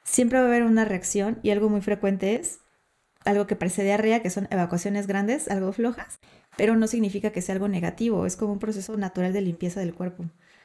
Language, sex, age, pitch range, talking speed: Spanish, female, 20-39, 180-220 Hz, 210 wpm